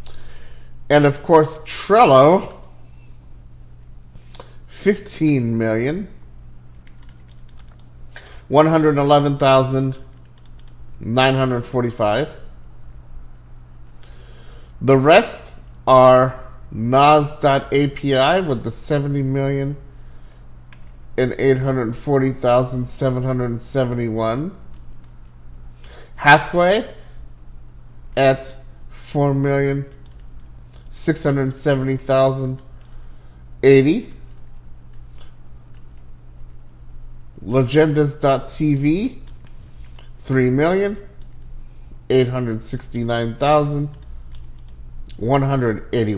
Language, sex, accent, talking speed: English, male, American, 55 wpm